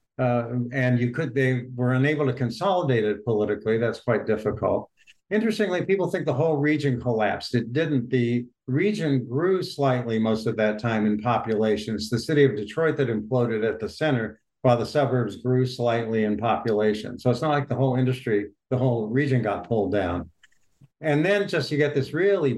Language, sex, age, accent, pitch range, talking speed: English, male, 60-79, American, 110-130 Hz, 180 wpm